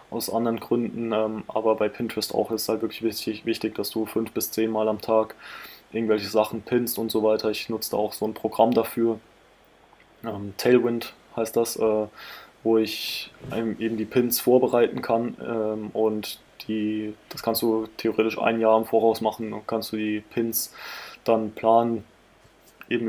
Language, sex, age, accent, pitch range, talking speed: German, male, 20-39, German, 110-115 Hz, 175 wpm